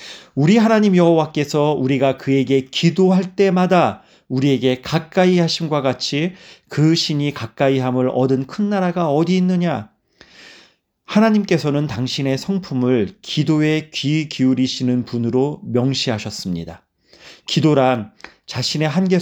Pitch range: 130-170 Hz